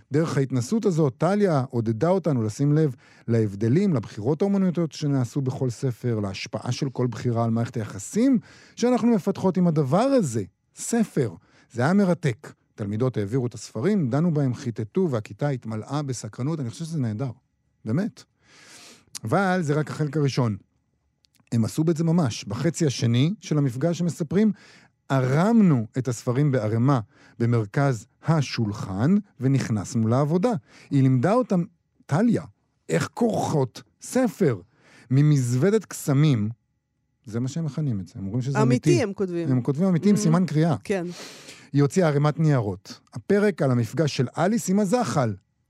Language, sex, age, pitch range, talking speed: Hebrew, male, 50-69, 125-170 Hz, 140 wpm